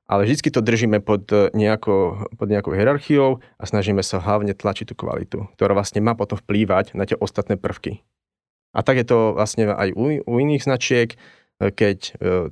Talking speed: 175 wpm